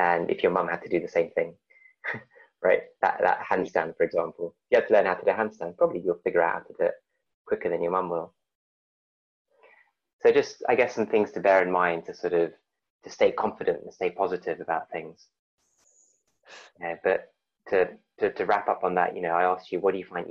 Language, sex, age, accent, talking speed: English, male, 20-39, British, 230 wpm